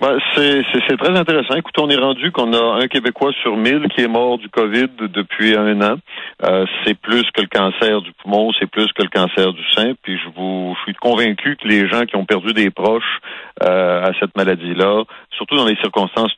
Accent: French